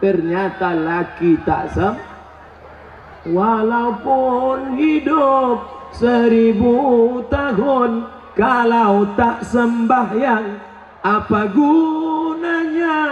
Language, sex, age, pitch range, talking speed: Indonesian, male, 40-59, 175-240 Hz, 60 wpm